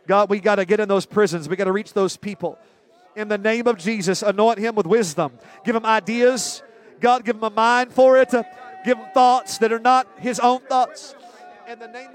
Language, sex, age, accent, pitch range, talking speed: English, male, 40-59, American, 180-230 Hz, 220 wpm